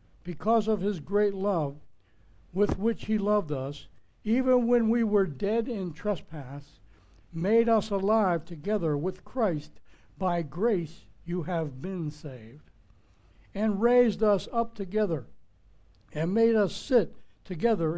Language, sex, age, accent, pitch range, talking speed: English, male, 60-79, American, 140-215 Hz, 130 wpm